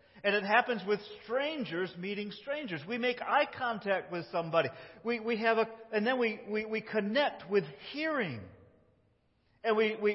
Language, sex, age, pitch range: English, male, 50-69, 185-255 Hz